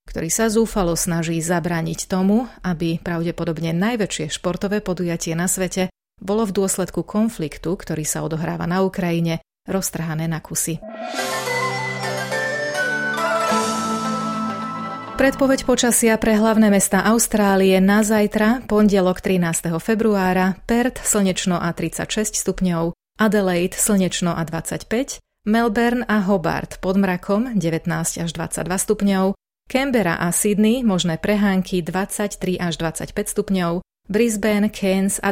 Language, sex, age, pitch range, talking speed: Slovak, female, 30-49, 170-215 Hz, 110 wpm